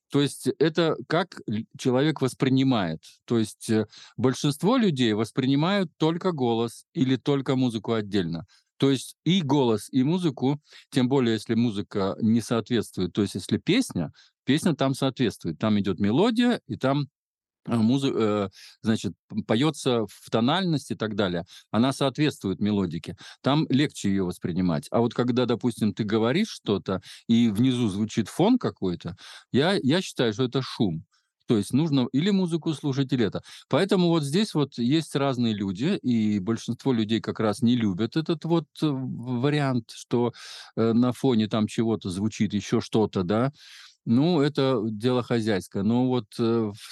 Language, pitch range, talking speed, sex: Russian, 110-140 Hz, 145 wpm, male